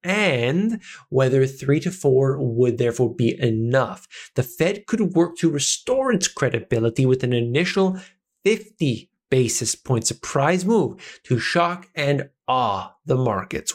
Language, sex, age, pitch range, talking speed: English, male, 20-39, 120-145 Hz, 135 wpm